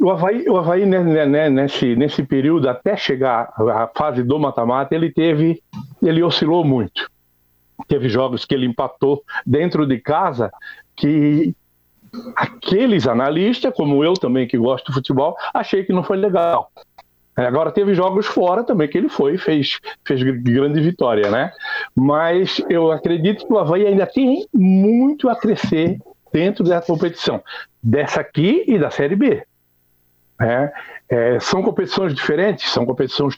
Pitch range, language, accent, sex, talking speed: 135-185 Hz, Portuguese, Brazilian, male, 145 wpm